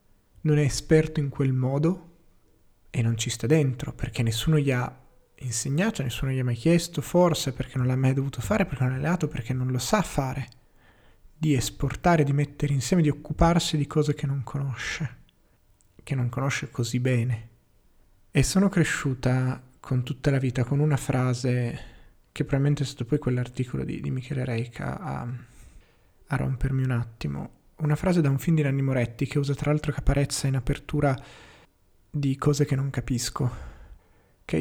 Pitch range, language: 125-145 Hz, Italian